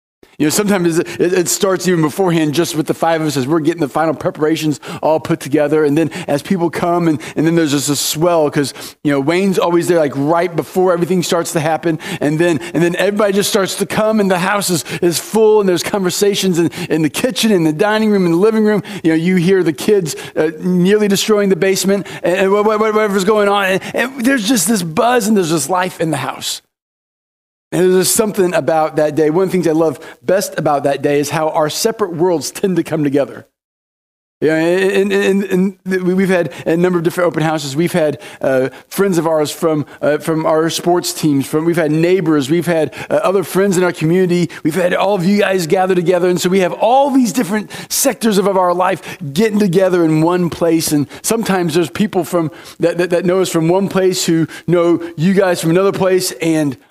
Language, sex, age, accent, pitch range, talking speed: English, male, 40-59, American, 155-195 Hz, 225 wpm